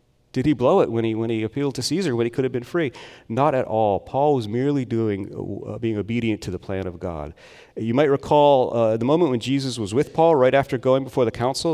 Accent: American